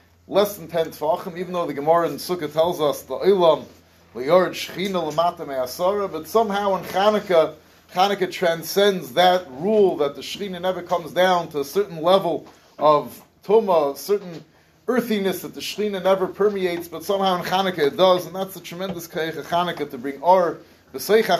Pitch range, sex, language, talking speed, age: 150-185 Hz, male, English, 165 wpm, 30-49